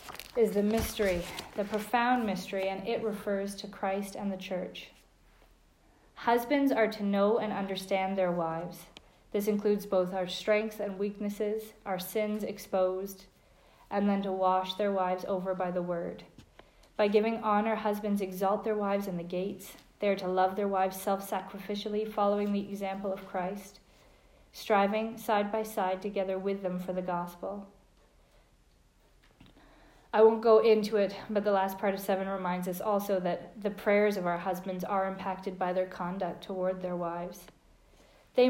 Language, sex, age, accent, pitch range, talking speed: English, female, 40-59, American, 185-210 Hz, 160 wpm